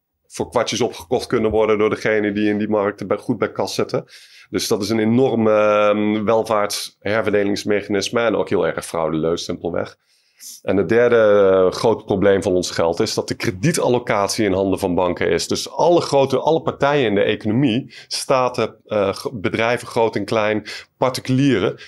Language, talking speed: Dutch, 160 wpm